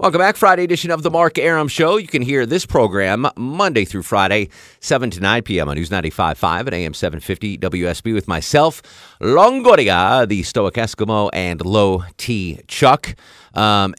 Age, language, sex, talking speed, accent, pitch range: 30-49, English, male, 165 wpm, American, 85-125 Hz